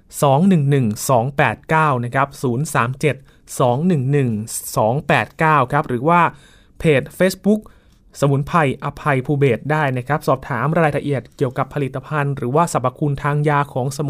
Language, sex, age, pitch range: Thai, male, 20-39, 130-155 Hz